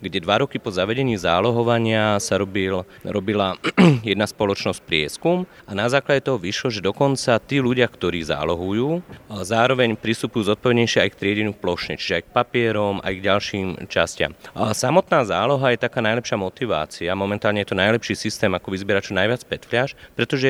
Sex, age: male, 30-49